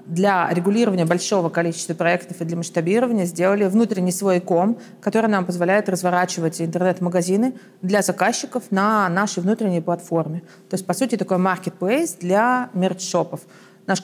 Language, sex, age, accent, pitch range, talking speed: Russian, female, 30-49, native, 180-220 Hz, 135 wpm